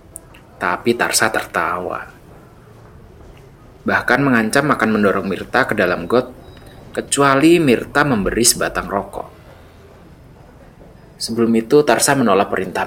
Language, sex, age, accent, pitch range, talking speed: Indonesian, male, 20-39, native, 95-120 Hz, 100 wpm